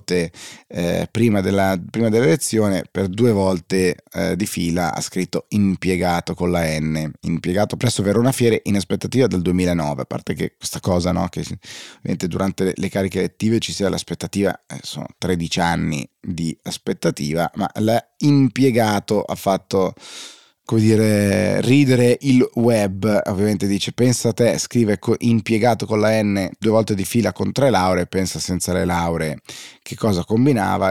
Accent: native